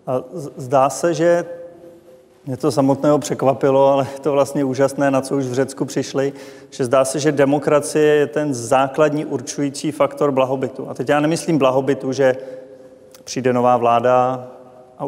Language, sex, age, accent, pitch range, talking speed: Czech, male, 30-49, native, 130-145 Hz, 160 wpm